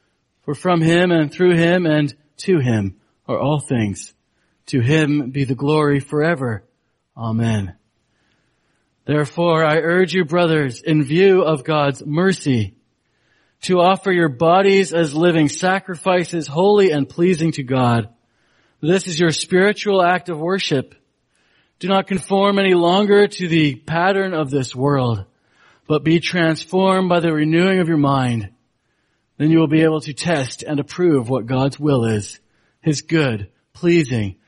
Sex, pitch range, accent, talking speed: male, 135-175 Hz, American, 145 wpm